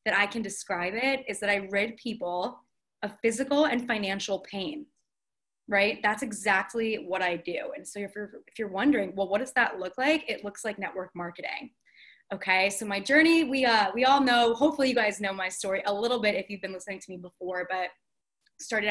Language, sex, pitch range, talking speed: English, female, 200-255 Hz, 210 wpm